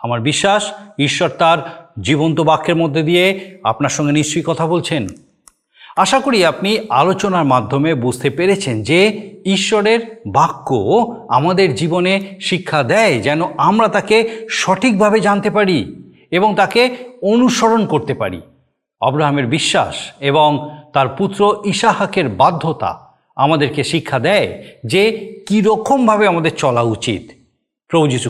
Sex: male